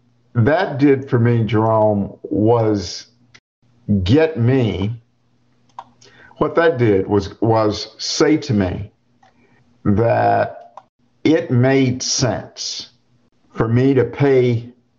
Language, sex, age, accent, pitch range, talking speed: English, male, 50-69, American, 105-125 Hz, 95 wpm